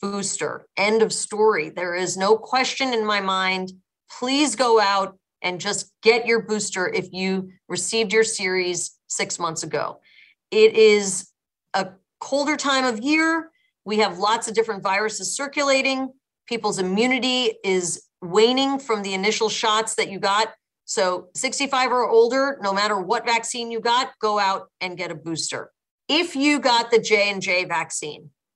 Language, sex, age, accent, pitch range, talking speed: English, female, 40-59, American, 190-235 Hz, 155 wpm